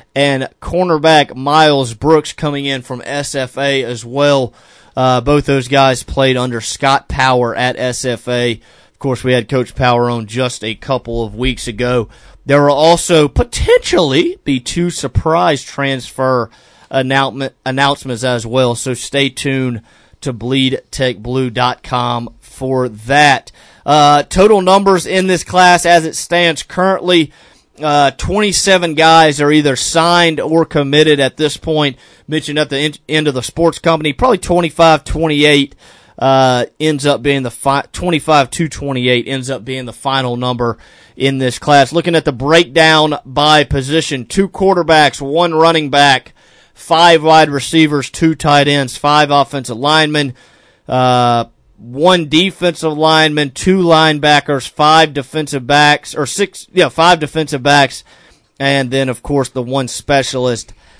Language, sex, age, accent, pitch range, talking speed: English, male, 30-49, American, 130-160 Hz, 140 wpm